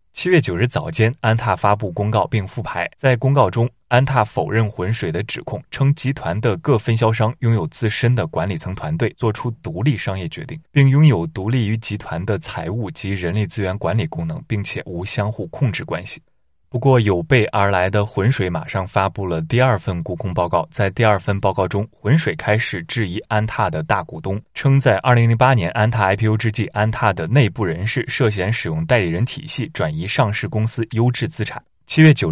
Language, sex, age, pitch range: Chinese, male, 20-39, 100-130 Hz